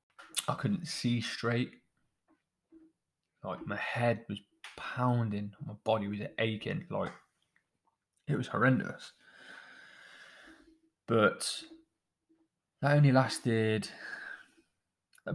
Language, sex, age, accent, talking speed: English, male, 20-39, British, 85 wpm